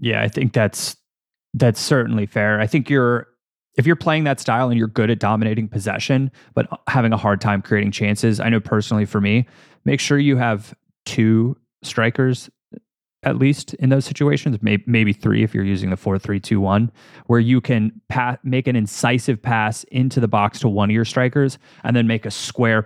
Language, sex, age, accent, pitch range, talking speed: English, male, 20-39, American, 105-125 Hz, 200 wpm